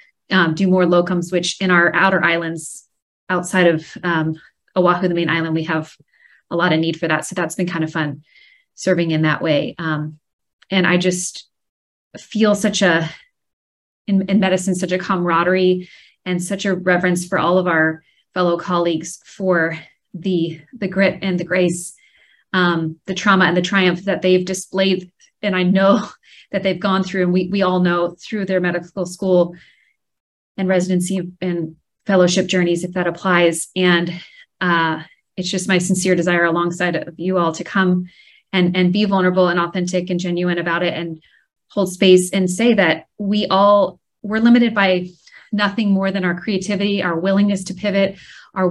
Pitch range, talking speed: 175-195 Hz, 175 wpm